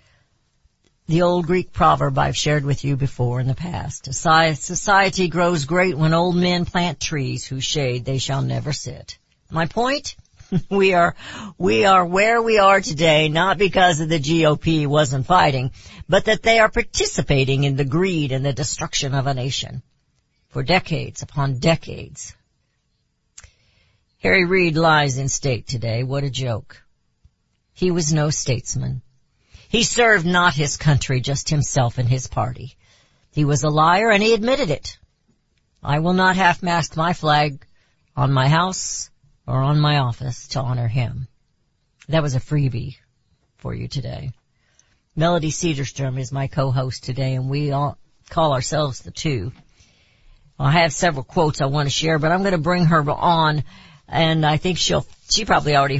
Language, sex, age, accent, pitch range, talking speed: English, female, 60-79, American, 130-170 Hz, 160 wpm